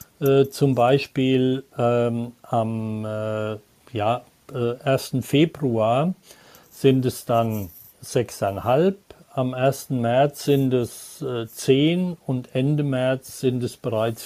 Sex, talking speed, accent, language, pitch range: male, 110 wpm, German, German, 125-155 Hz